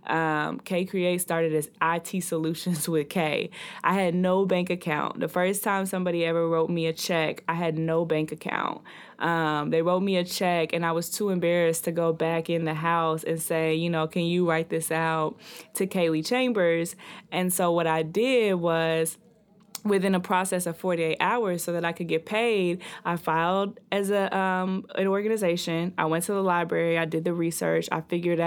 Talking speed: 195 wpm